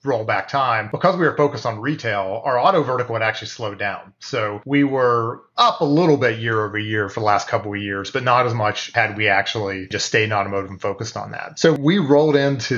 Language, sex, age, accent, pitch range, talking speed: English, male, 30-49, American, 110-135 Hz, 240 wpm